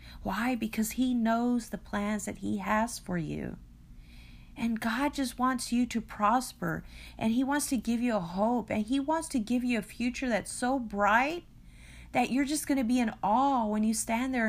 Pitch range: 210-290 Hz